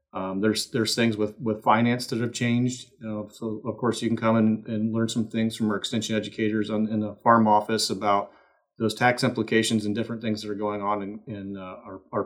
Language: English